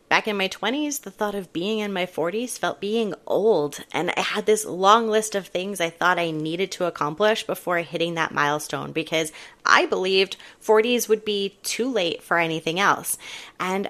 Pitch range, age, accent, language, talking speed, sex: 165-215 Hz, 30-49, American, English, 190 wpm, female